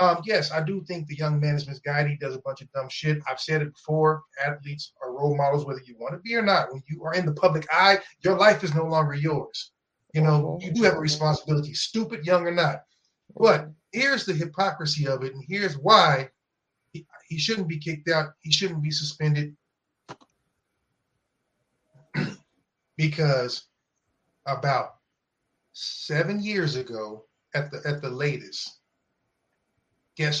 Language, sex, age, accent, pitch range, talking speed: English, male, 30-49, American, 145-185 Hz, 170 wpm